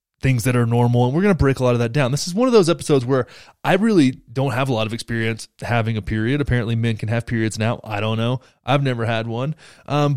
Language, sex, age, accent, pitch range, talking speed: English, male, 20-39, American, 115-145 Hz, 270 wpm